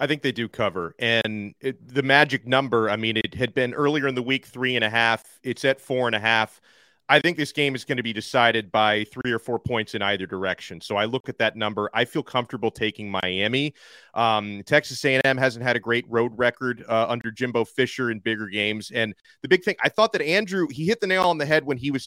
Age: 30-49